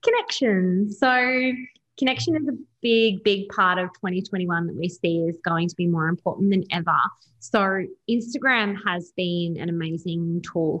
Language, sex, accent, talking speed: English, female, Australian, 155 wpm